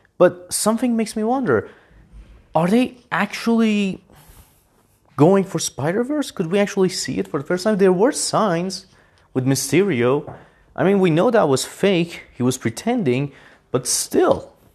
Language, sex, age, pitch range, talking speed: English, male, 30-49, 125-195 Hz, 150 wpm